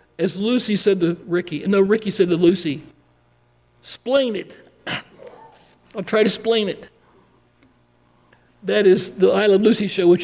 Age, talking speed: 60-79, 150 wpm